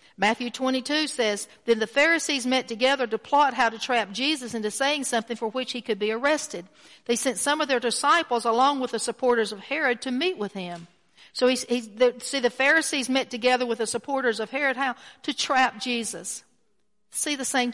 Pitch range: 215-275 Hz